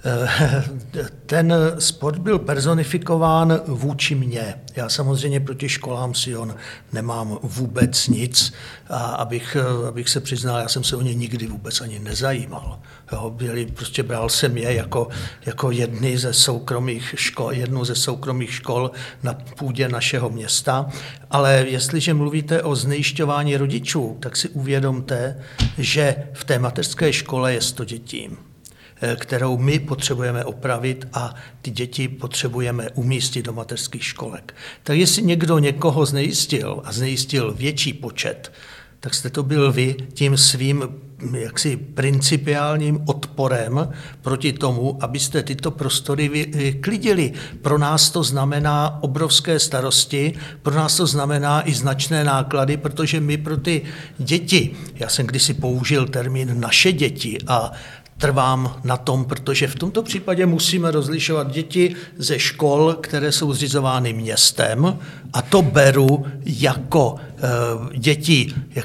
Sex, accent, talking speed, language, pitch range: male, native, 130 wpm, Czech, 125-150 Hz